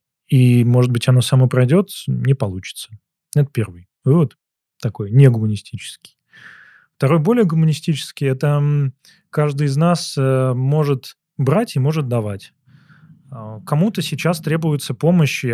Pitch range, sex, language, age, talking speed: 120-145 Hz, male, Russian, 20-39, 115 wpm